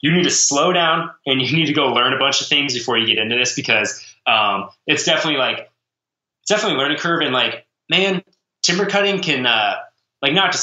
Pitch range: 115-145 Hz